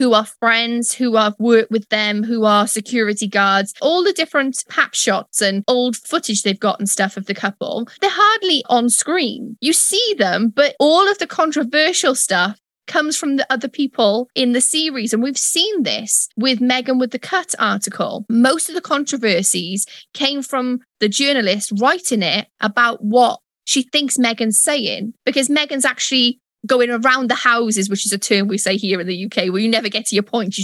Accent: British